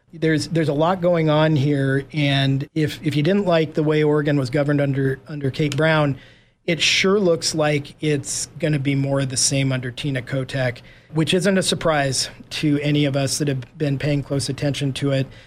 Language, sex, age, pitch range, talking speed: English, male, 40-59, 140-170 Hz, 205 wpm